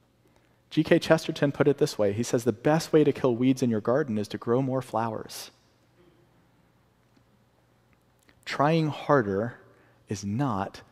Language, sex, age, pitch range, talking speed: English, male, 40-59, 100-130 Hz, 145 wpm